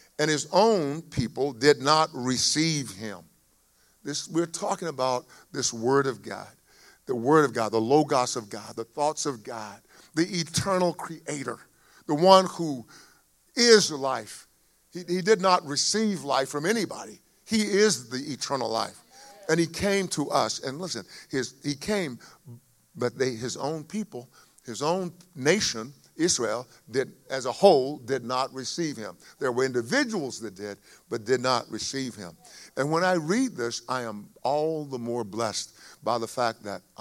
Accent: American